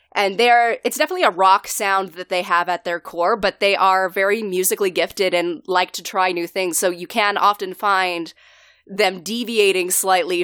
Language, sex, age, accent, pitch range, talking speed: English, female, 20-39, American, 180-210 Hz, 190 wpm